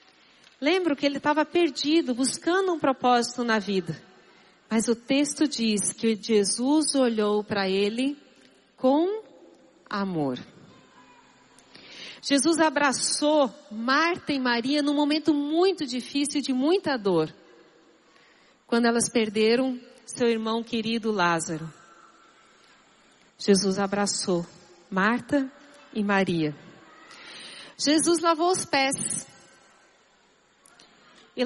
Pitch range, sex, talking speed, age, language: 210-290 Hz, female, 95 wpm, 40-59, Portuguese